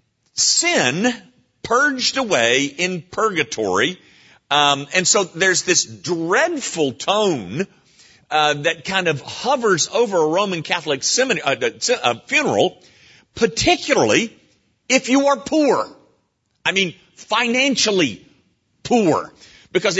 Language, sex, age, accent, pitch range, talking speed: English, male, 50-69, American, 130-195 Hz, 105 wpm